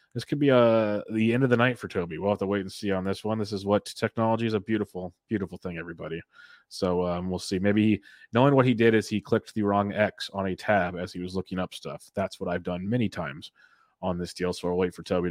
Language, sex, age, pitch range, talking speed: English, male, 30-49, 95-115 Hz, 270 wpm